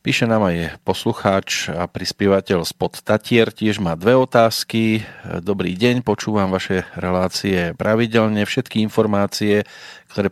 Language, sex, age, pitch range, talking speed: Slovak, male, 40-59, 95-115 Hz, 120 wpm